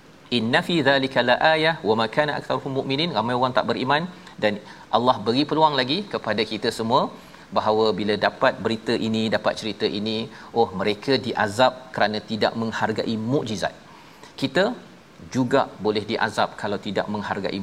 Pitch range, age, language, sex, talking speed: 110-135 Hz, 40-59, Malayalam, male, 150 wpm